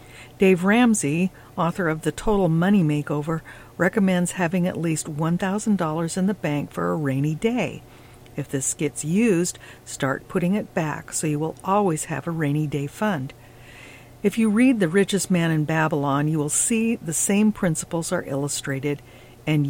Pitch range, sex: 140-190 Hz, female